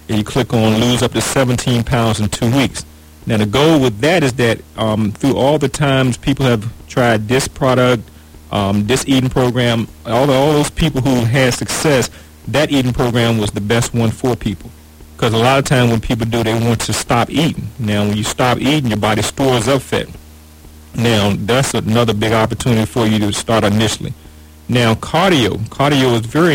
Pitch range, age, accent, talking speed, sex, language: 105-130 Hz, 40-59, American, 195 wpm, male, English